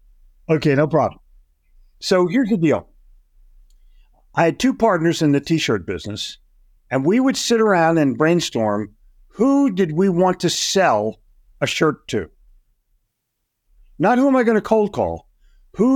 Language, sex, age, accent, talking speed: English, male, 50-69, American, 150 wpm